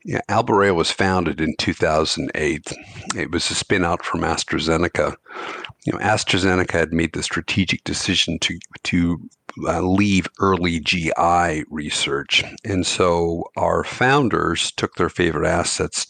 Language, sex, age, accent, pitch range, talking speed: English, male, 50-69, American, 85-95 Hz, 135 wpm